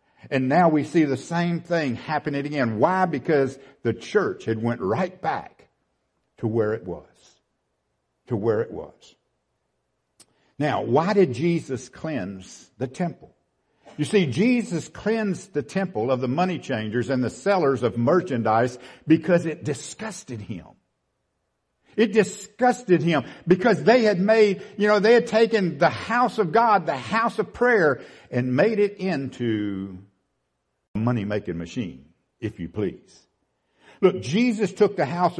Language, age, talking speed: English, 60-79, 145 wpm